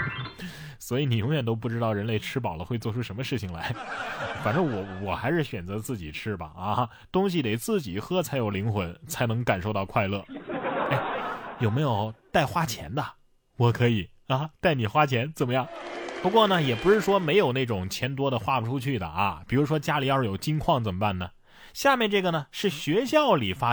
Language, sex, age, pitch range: Chinese, male, 20-39, 115-185 Hz